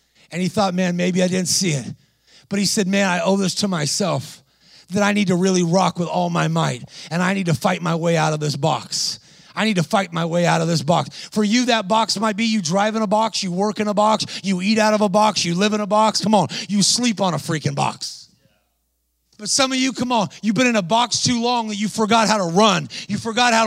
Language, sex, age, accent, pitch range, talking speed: English, male, 30-49, American, 190-240 Hz, 270 wpm